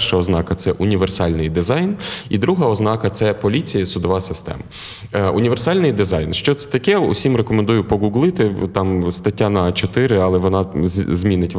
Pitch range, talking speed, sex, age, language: 95-125 Hz, 155 wpm, male, 20-39, Ukrainian